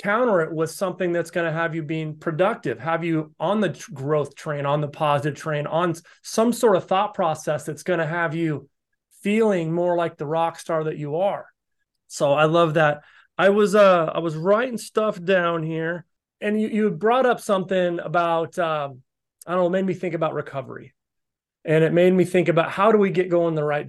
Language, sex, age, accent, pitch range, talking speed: English, male, 30-49, American, 155-195 Hz, 210 wpm